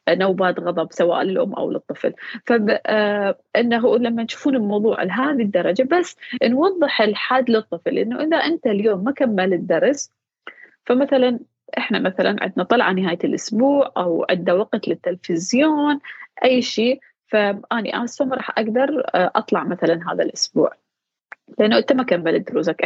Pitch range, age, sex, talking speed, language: 190-265 Hz, 20-39, female, 130 wpm, Arabic